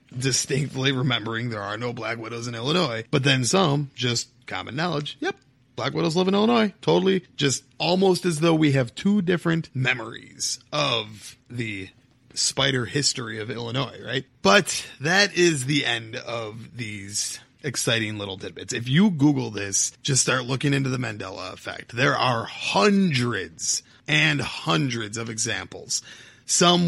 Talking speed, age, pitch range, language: 150 wpm, 30-49, 115-150 Hz, English